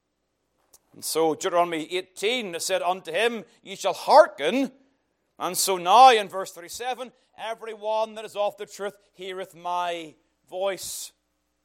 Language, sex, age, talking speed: English, male, 40-59, 135 wpm